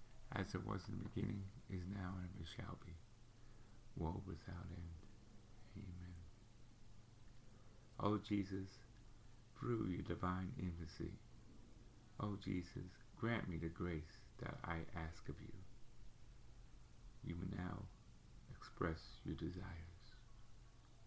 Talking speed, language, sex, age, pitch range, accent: 110 wpm, English, male, 50-69, 95-115 Hz, American